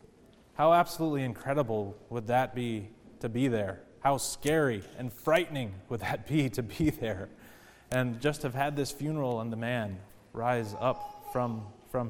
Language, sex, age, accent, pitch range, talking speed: English, male, 30-49, American, 120-165 Hz, 160 wpm